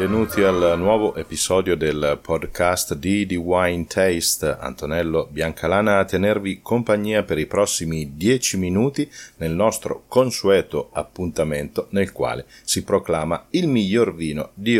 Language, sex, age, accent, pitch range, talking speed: Italian, male, 40-59, native, 85-115 Hz, 130 wpm